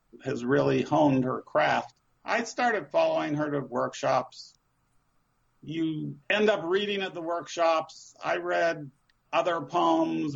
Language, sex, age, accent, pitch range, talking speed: English, male, 50-69, American, 135-170 Hz, 125 wpm